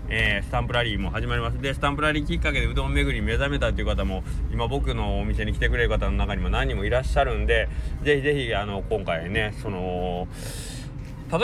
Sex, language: male, Japanese